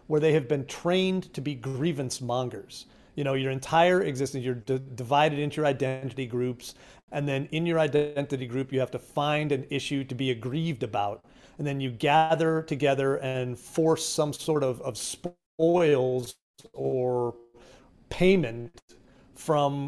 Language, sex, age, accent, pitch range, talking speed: English, male, 40-59, American, 130-170 Hz, 155 wpm